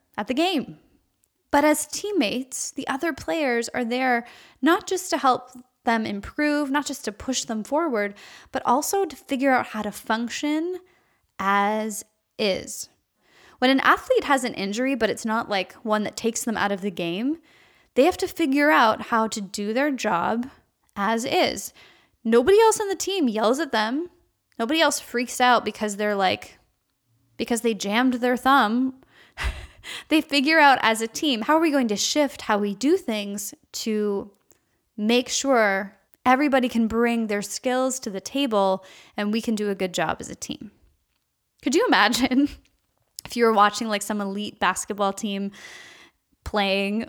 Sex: female